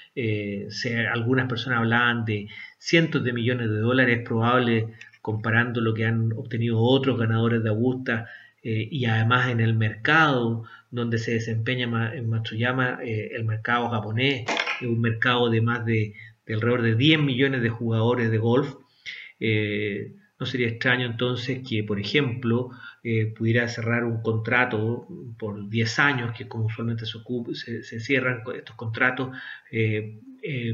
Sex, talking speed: male, 150 wpm